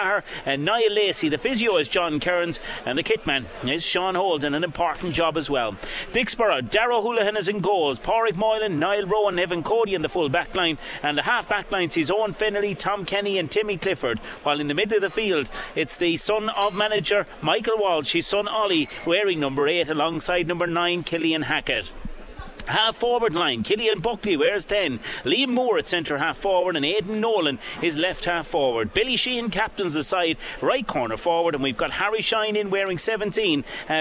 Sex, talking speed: male, 195 wpm